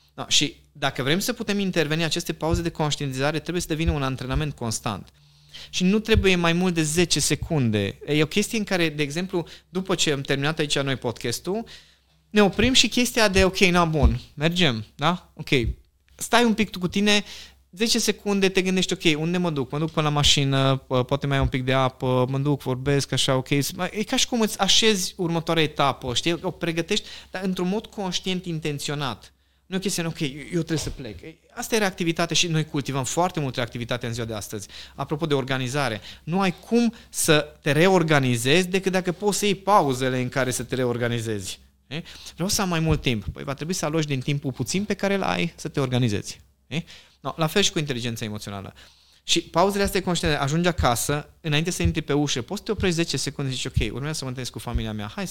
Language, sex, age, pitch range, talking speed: Romanian, male, 20-39, 130-180 Hz, 210 wpm